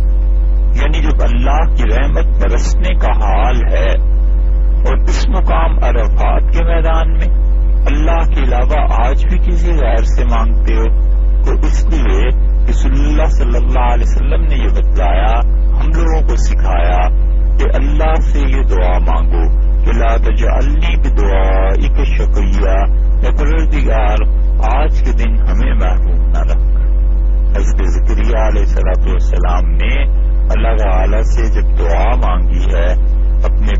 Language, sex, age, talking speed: English, male, 60-79, 110 wpm